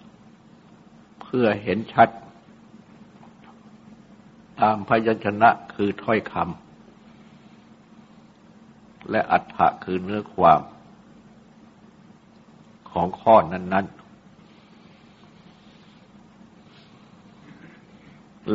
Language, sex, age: Thai, male, 60-79